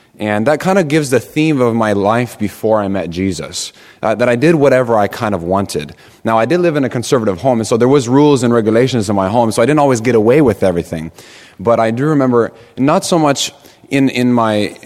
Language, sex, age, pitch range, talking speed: English, male, 30-49, 100-125 Hz, 240 wpm